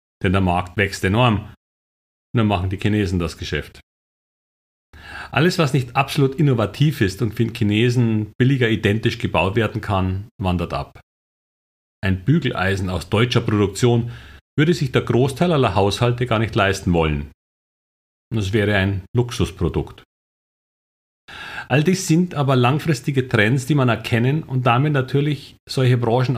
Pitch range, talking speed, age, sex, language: 95-125 Hz, 135 wpm, 40-59, male, German